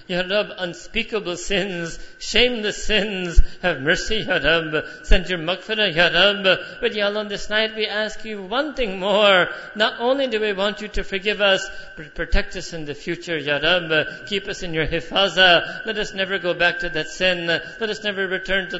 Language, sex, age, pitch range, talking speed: English, male, 50-69, 170-195 Hz, 200 wpm